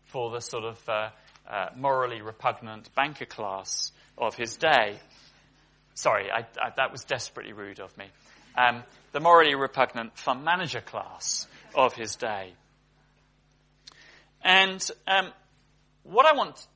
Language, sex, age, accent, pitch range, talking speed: English, male, 30-49, British, 130-180 Hz, 135 wpm